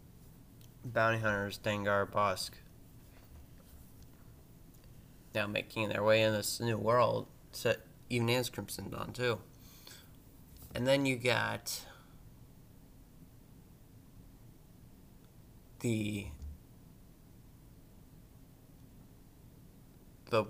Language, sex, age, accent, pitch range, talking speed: English, male, 20-39, American, 100-120 Hz, 70 wpm